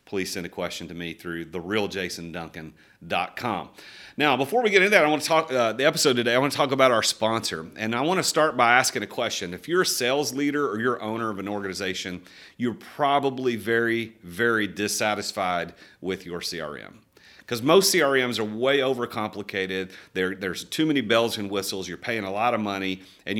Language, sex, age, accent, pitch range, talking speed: English, male, 40-59, American, 100-130 Hz, 195 wpm